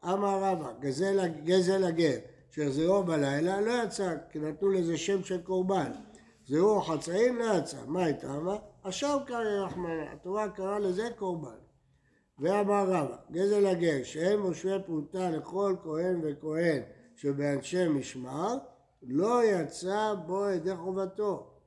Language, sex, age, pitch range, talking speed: Hebrew, male, 60-79, 150-200 Hz, 125 wpm